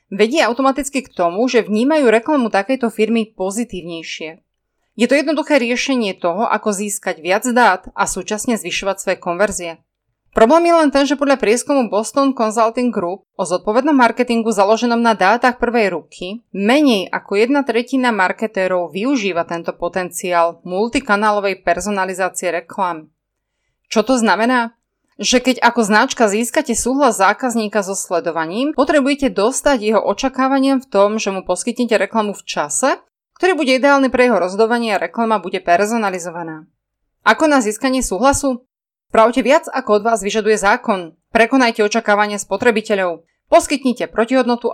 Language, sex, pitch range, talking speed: Slovak, female, 190-250 Hz, 135 wpm